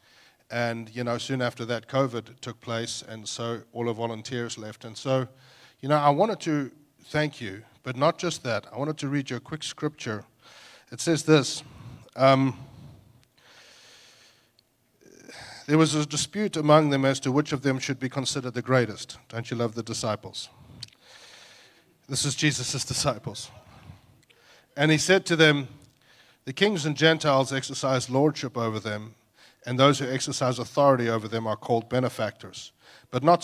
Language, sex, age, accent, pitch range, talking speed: English, male, 40-59, Australian, 120-150 Hz, 160 wpm